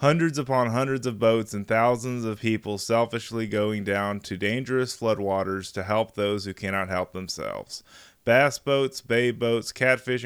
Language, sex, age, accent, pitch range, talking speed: English, male, 20-39, American, 100-125 Hz, 160 wpm